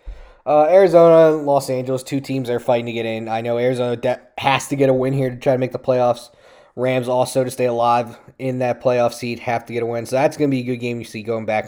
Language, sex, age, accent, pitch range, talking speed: English, male, 20-39, American, 115-140 Hz, 285 wpm